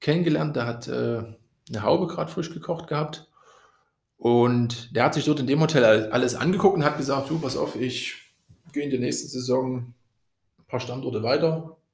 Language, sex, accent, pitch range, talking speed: German, male, German, 110-135 Hz, 185 wpm